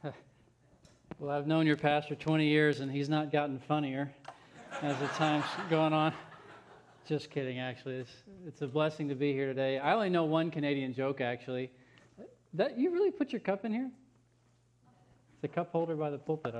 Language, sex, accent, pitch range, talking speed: English, male, American, 130-150 Hz, 180 wpm